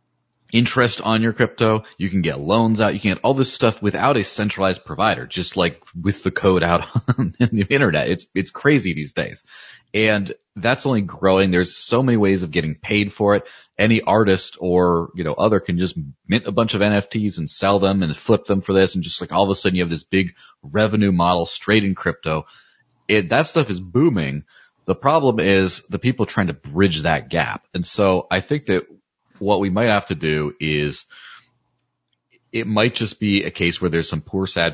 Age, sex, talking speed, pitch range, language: 30-49, male, 210 wpm, 80-105 Hz, English